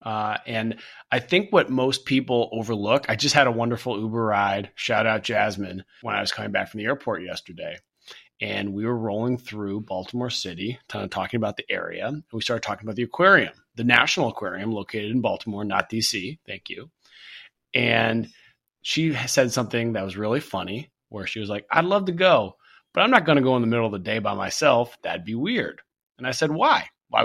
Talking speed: 210 wpm